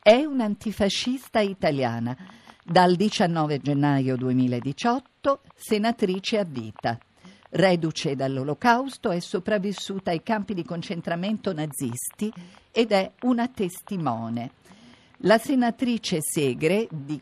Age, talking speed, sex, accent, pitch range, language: 50-69, 95 wpm, female, native, 150-200 Hz, Italian